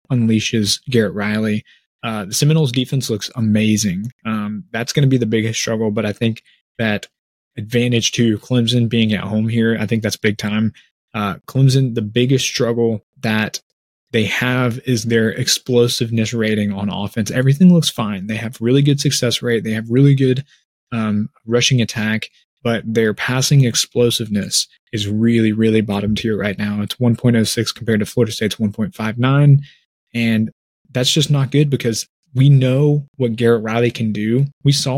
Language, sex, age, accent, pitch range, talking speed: English, male, 20-39, American, 110-130 Hz, 175 wpm